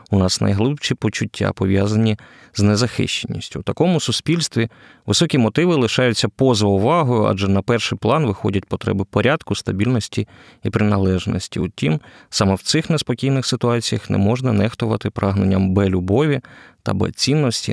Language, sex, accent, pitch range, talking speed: Ukrainian, male, native, 100-130 Hz, 125 wpm